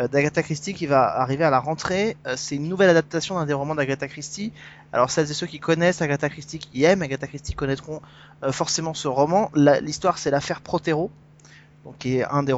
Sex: male